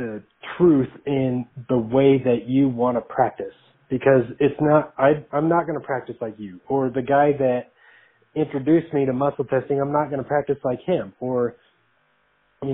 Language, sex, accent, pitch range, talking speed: English, male, American, 125-150 Hz, 185 wpm